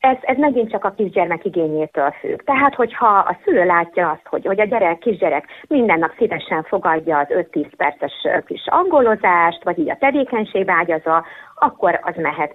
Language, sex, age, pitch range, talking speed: Hungarian, female, 30-49, 155-205 Hz, 165 wpm